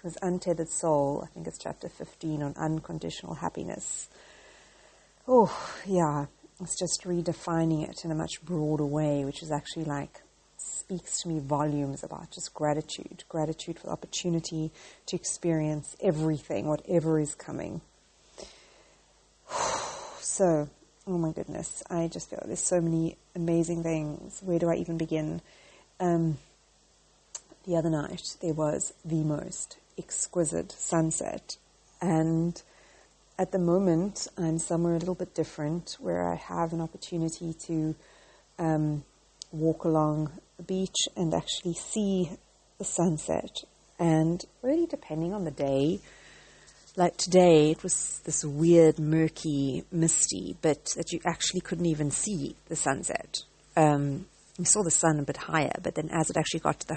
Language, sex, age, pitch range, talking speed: English, female, 30-49, 155-175 Hz, 140 wpm